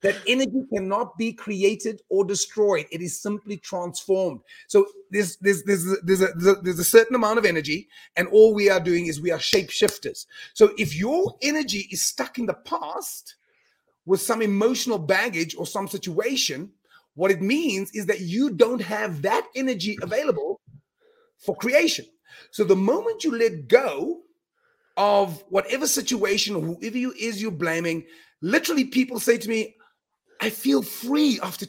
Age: 30-49